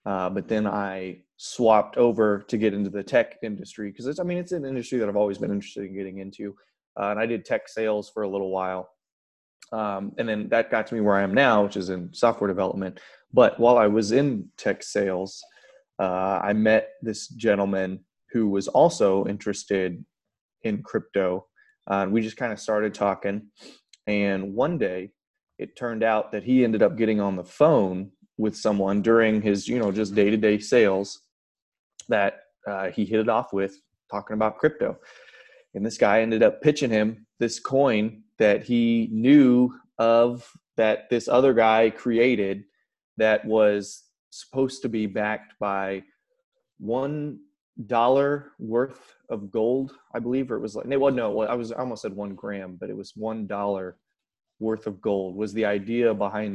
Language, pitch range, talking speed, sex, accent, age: English, 100-115 Hz, 175 wpm, male, American, 20-39